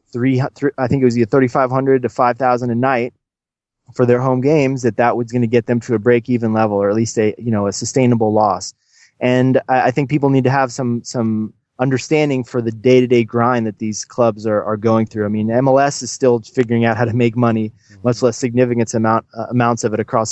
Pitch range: 115-130 Hz